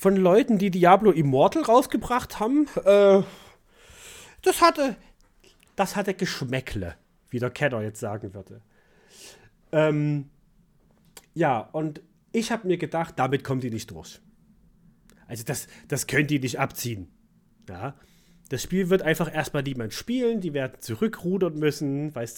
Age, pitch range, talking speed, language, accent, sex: 30-49, 125-170 Hz, 130 wpm, German, German, male